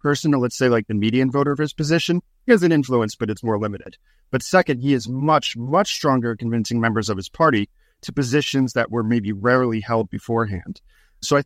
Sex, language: male, English